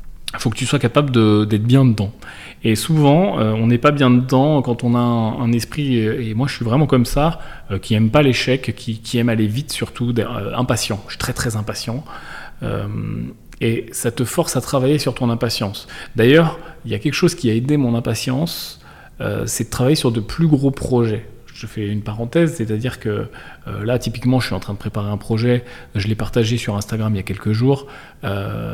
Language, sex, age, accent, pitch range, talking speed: French, male, 30-49, French, 110-130 Hz, 220 wpm